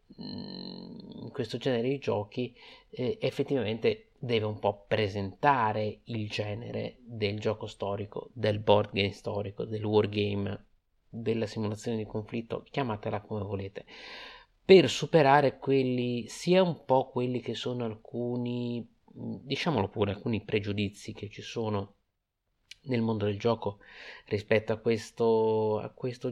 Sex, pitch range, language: male, 105-125 Hz, Italian